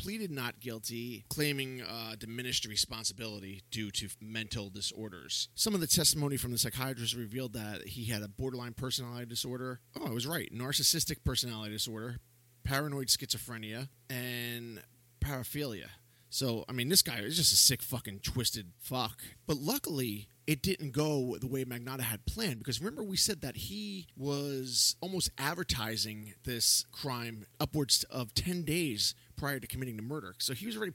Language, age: English, 30-49